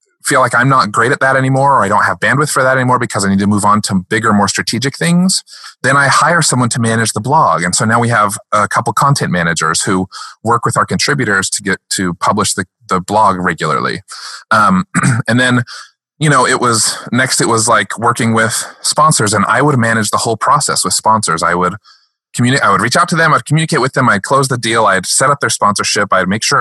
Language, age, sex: English, 20-39, male